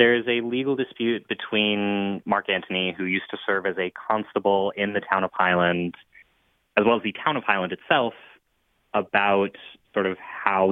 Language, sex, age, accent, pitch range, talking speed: English, male, 20-39, American, 90-100 Hz, 180 wpm